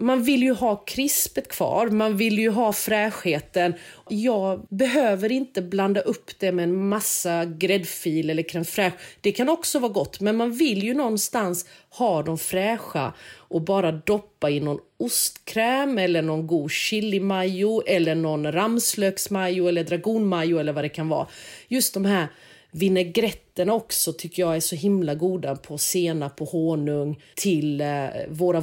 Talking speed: 155 wpm